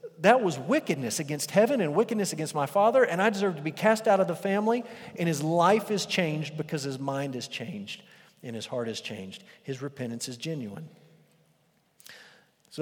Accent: American